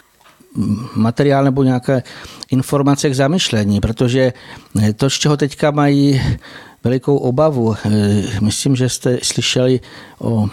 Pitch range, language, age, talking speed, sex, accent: 120-140 Hz, Czech, 50-69, 110 wpm, male, native